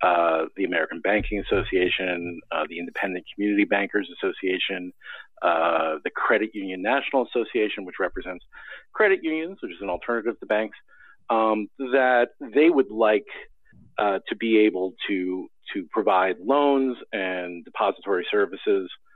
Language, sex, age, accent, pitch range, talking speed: English, male, 40-59, American, 95-155 Hz, 135 wpm